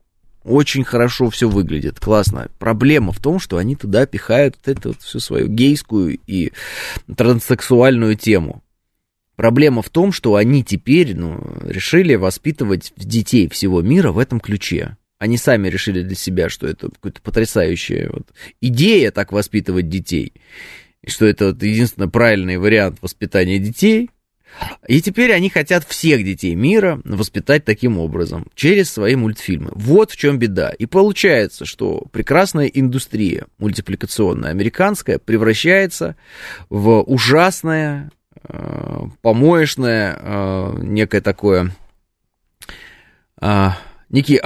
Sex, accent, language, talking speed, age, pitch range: male, native, Russian, 120 wpm, 20-39, 100-140 Hz